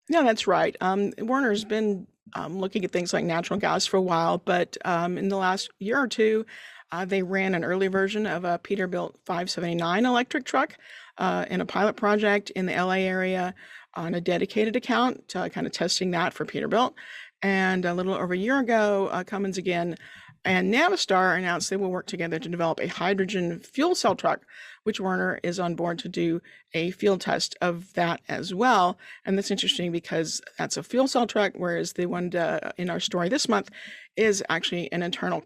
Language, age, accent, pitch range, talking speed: English, 40-59, American, 180-220 Hz, 195 wpm